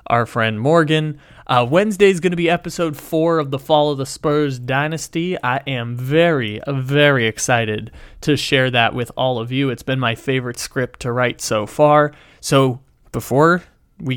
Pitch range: 120-150 Hz